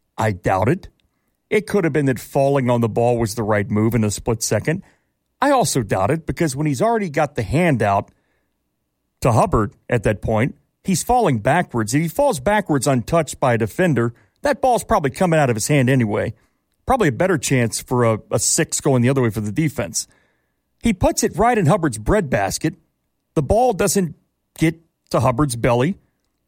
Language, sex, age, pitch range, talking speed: English, male, 40-59, 125-205 Hz, 195 wpm